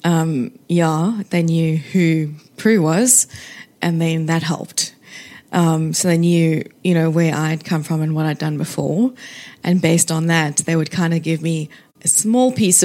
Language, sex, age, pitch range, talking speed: English, female, 20-39, 160-200 Hz, 180 wpm